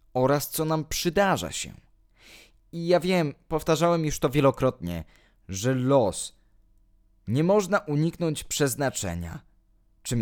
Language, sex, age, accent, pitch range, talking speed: Polish, male, 20-39, native, 105-165 Hz, 110 wpm